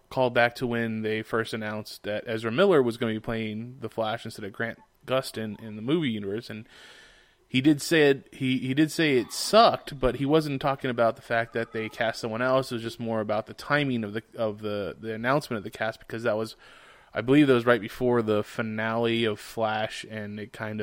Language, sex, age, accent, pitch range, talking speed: English, male, 20-39, American, 110-130 Hz, 230 wpm